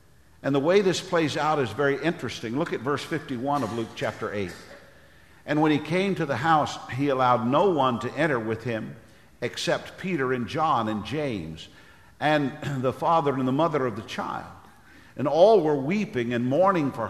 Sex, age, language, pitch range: male, 50-69, English, 110-150 Hz